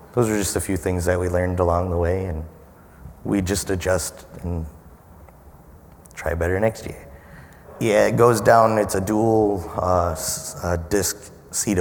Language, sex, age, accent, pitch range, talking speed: English, male, 30-49, American, 80-90 Hz, 165 wpm